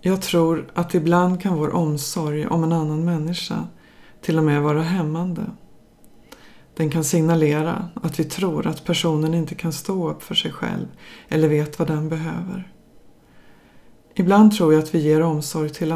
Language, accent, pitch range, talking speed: English, Swedish, 155-180 Hz, 165 wpm